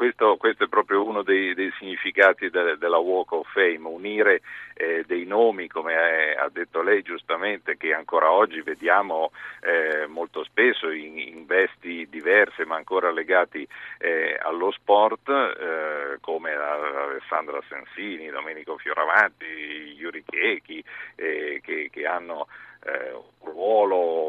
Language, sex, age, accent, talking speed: Italian, male, 50-69, native, 130 wpm